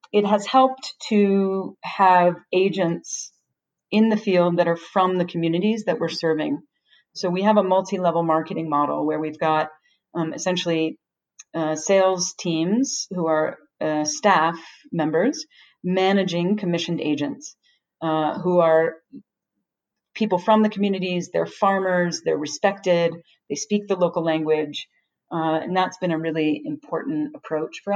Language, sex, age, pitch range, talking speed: English, female, 40-59, 160-195 Hz, 140 wpm